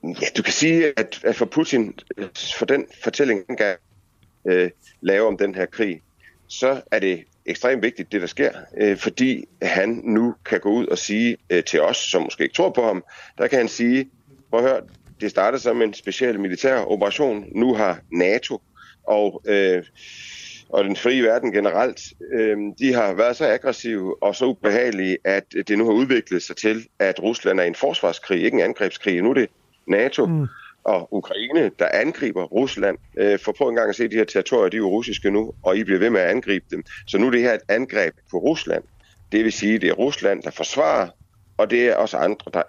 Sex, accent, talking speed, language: male, native, 200 wpm, Danish